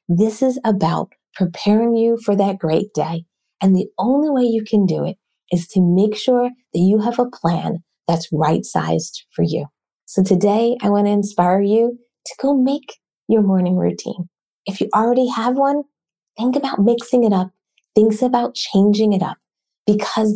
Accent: American